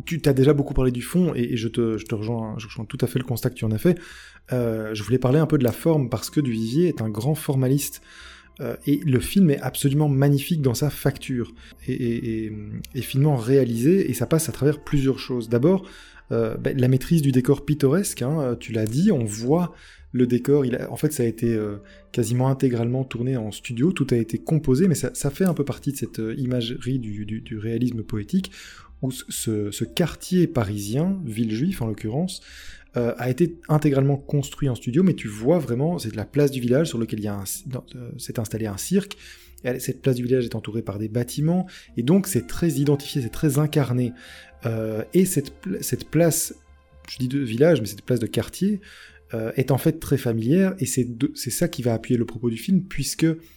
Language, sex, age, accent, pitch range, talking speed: French, male, 20-39, French, 115-150 Hz, 220 wpm